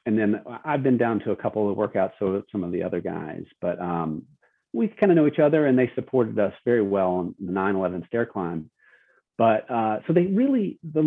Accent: American